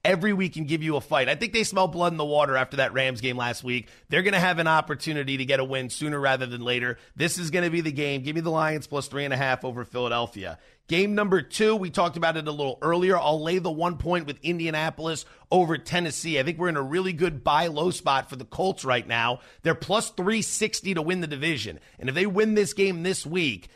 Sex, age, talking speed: male, 30-49, 260 wpm